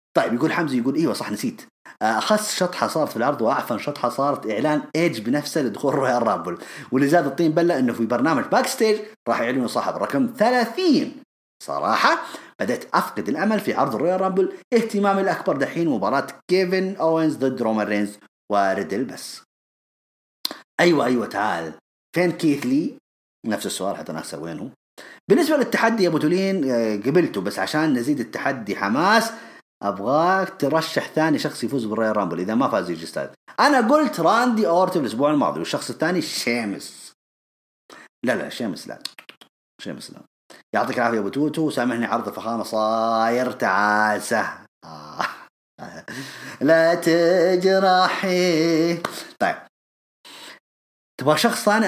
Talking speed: 130 wpm